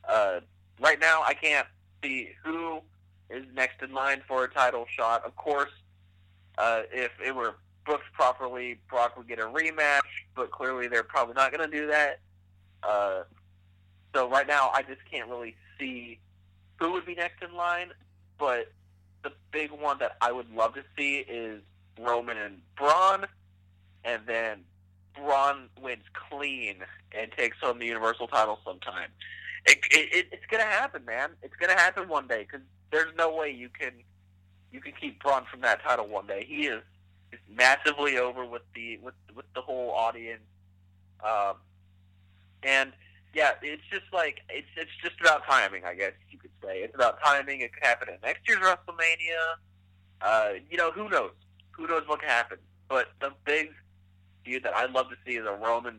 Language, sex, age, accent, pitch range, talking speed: English, male, 20-39, American, 90-140 Hz, 175 wpm